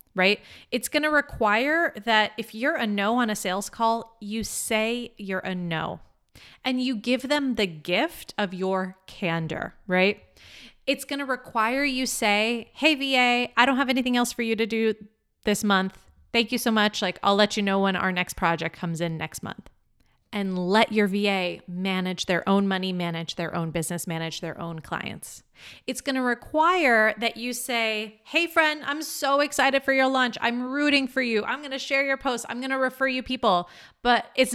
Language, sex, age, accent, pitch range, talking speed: English, female, 30-49, American, 200-275 Hz, 200 wpm